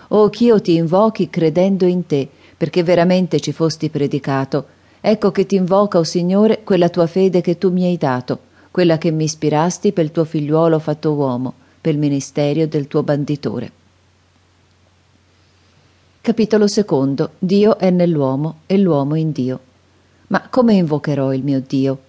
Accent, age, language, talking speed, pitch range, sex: native, 40-59, Italian, 160 wpm, 150-185 Hz, female